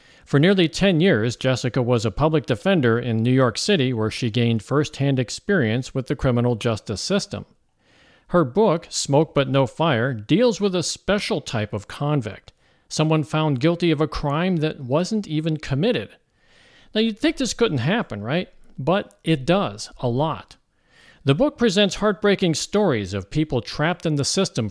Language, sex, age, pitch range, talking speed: English, male, 50-69, 125-170 Hz, 170 wpm